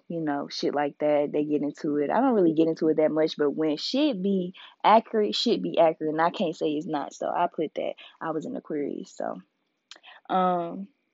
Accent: American